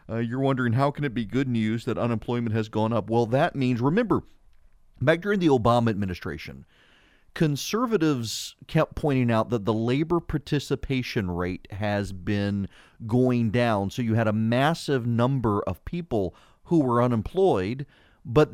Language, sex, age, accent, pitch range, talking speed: English, male, 40-59, American, 110-145 Hz, 155 wpm